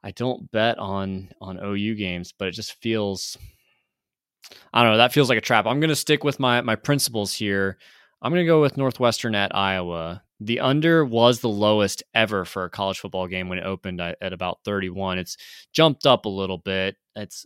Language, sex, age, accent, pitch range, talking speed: English, male, 20-39, American, 100-115 Hz, 210 wpm